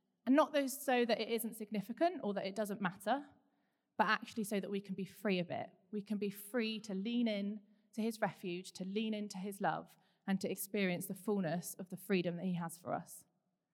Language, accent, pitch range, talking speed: English, British, 180-215 Hz, 220 wpm